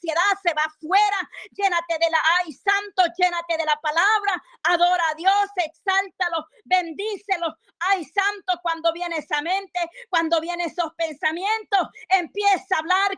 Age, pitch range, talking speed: 40-59, 300-370 Hz, 135 wpm